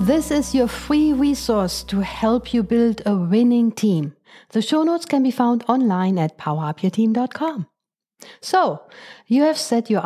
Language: English